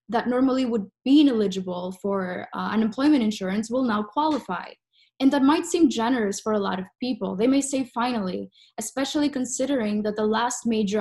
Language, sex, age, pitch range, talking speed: English, female, 10-29, 205-260 Hz, 175 wpm